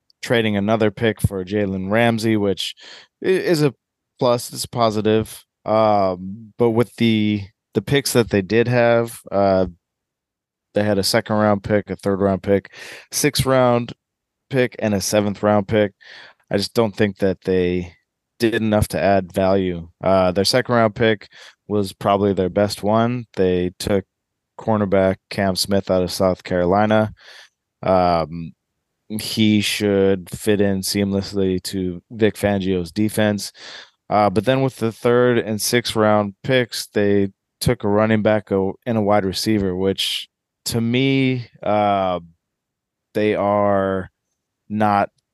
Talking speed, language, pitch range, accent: 135 wpm, English, 95-115 Hz, American